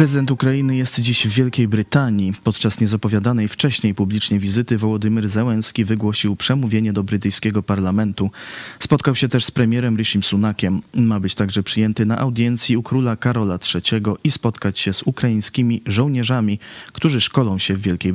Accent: native